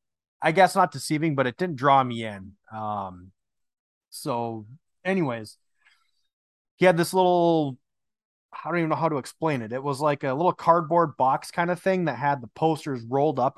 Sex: male